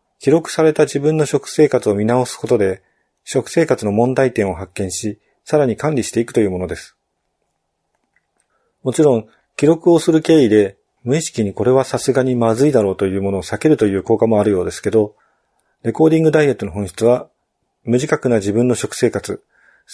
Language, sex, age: Japanese, male, 40-59